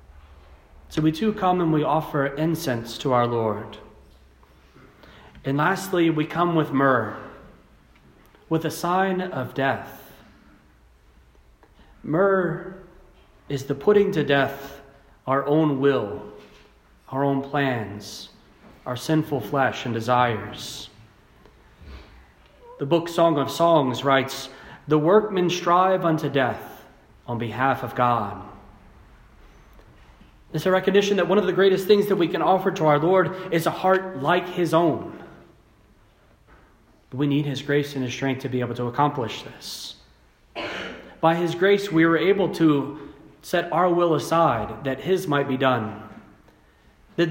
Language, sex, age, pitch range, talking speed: English, male, 30-49, 125-170 Hz, 135 wpm